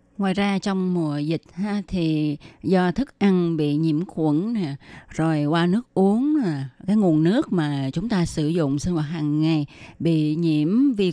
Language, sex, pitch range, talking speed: Vietnamese, female, 155-200 Hz, 185 wpm